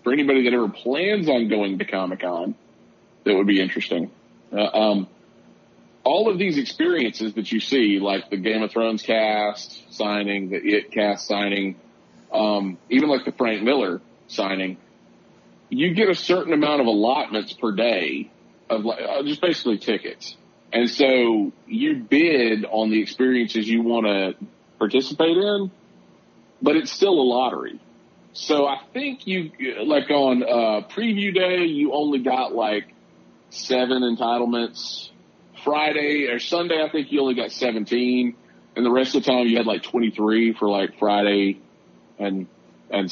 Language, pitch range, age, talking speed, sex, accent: English, 105-150 Hz, 40-59, 155 wpm, male, American